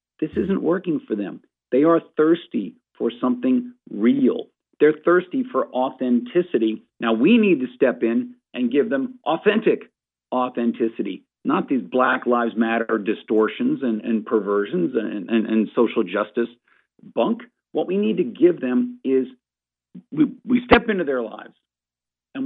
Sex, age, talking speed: male, 50-69, 145 wpm